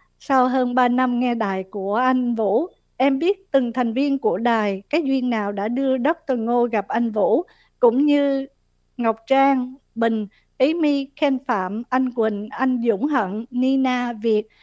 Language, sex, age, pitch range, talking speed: Vietnamese, female, 50-69, 215-270 Hz, 170 wpm